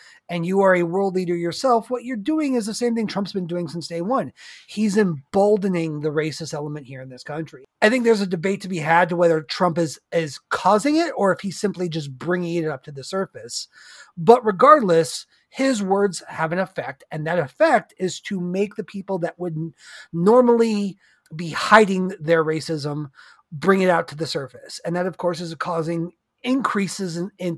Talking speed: 200 wpm